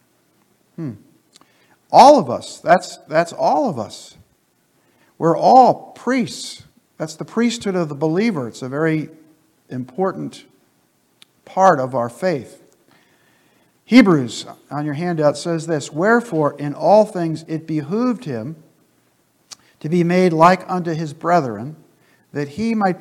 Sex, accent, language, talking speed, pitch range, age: male, American, English, 125 wpm, 145-195 Hz, 50-69